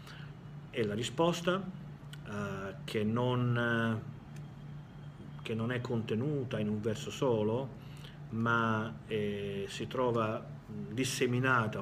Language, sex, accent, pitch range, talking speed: Italian, male, native, 115-145 Hz, 100 wpm